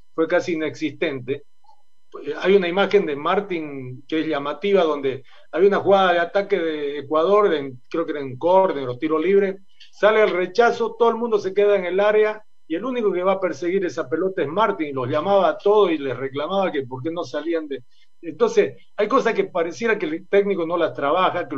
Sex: male